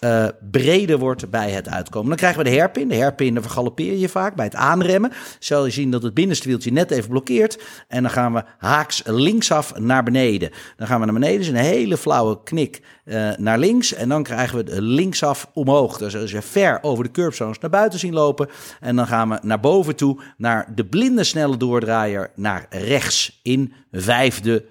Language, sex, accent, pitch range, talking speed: Dutch, male, Dutch, 110-150 Hz, 210 wpm